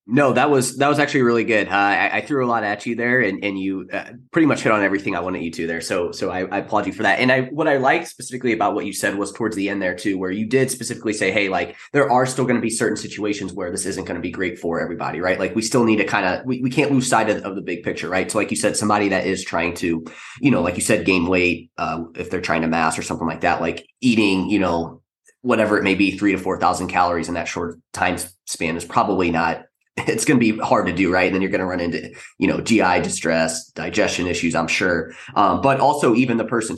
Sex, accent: male, American